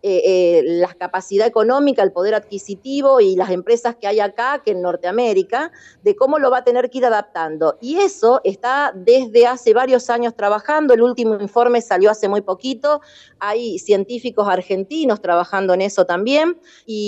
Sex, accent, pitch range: female, Argentinian, 195-265 Hz